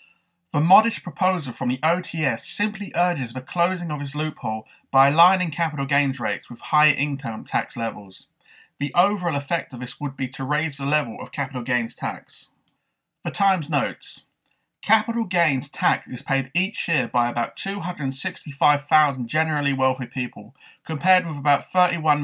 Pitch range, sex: 130-170 Hz, male